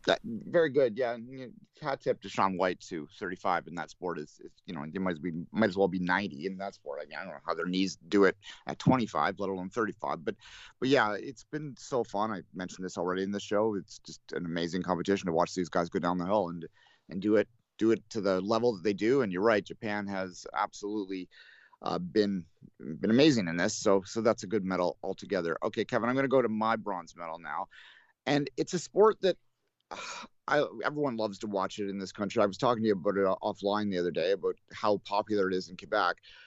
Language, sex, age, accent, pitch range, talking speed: English, male, 30-49, American, 95-125 Hz, 235 wpm